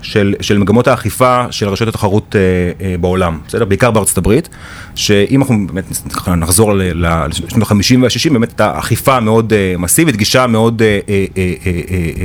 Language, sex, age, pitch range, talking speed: Hebrew, male, 30-49, 95-125 Hz, 160 wpm